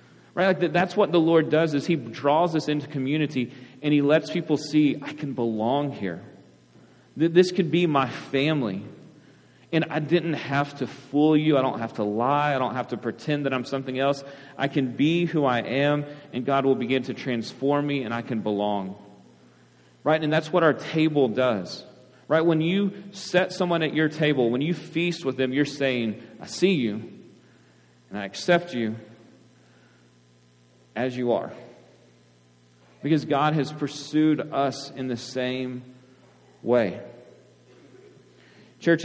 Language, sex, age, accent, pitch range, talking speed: English, male, 30-49, American, 110-150 Hz, 165 wpm